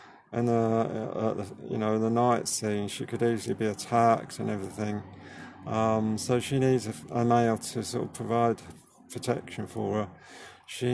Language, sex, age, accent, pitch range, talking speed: English, male, 50-69, British, 110-130 Hz, 175 wpm